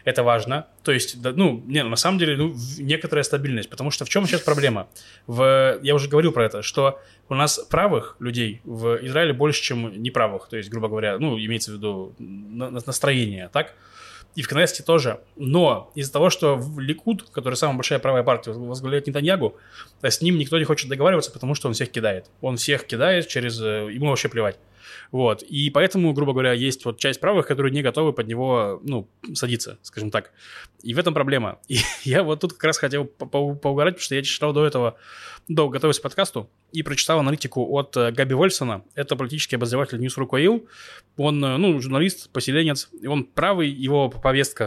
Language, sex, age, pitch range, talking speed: Russian, male, 20-39, 120-150 Hz, 190 wpm